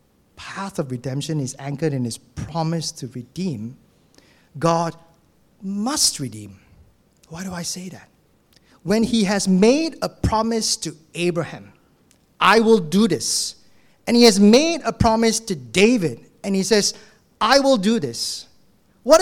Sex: male